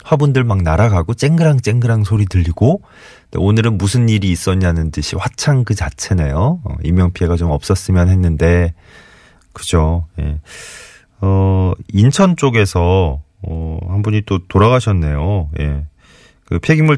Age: 30-49